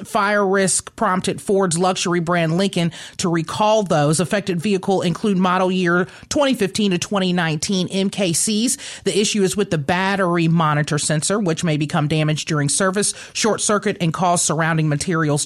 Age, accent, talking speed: 30-49, American, 150 wpm